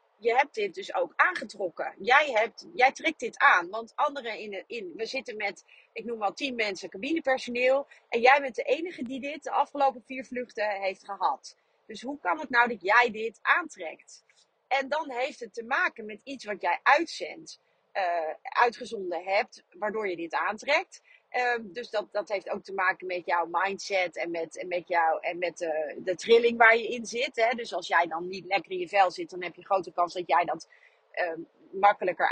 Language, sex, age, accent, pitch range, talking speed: Dutch, female, 40-59, Dutch, 185-265 Hz, 195 wpm